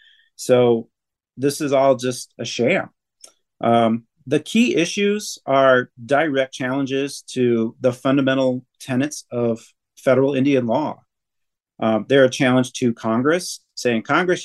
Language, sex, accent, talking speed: English, male, American, 125 wpm